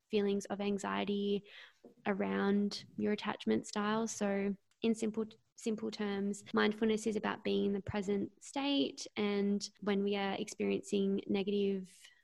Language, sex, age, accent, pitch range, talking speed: English, female, 20-39, Australian, 195-220 Hz, 130 wpm